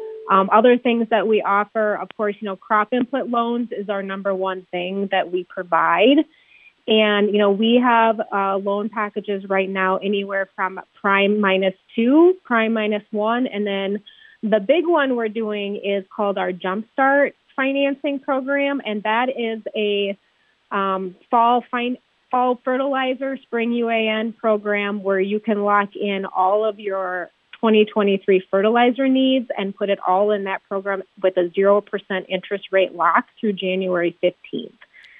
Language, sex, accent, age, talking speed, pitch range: English, female, American, 30-49, 155 wpm, 195-240 Hz